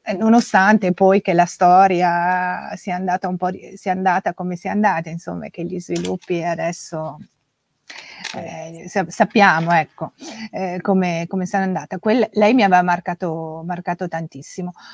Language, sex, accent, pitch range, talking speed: Italian, female, native, 175-205 Hz, 140 wpm